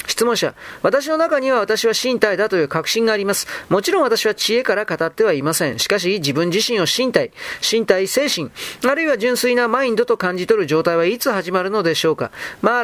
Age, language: 40-59, Japanese